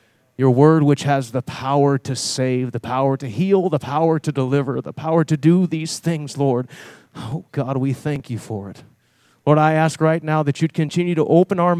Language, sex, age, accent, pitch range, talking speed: English, male, 30-49, American, 125-160 Hz, 210 wpm